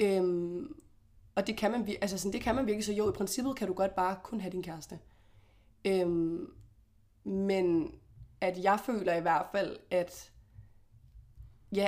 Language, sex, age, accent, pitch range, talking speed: Danish, female, 20-39, native, 180-205 Hz, 165 wpm